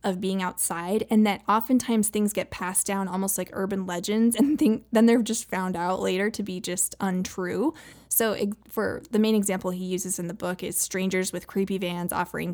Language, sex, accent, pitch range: English, female, American, 185-220 Hz